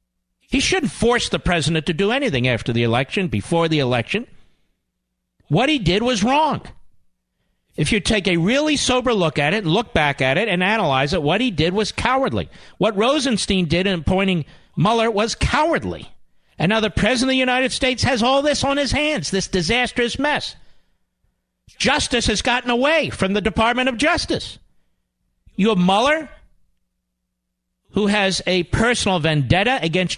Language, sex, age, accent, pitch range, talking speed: English, male, 50-69, American, 160-250 Hz, 165 wpm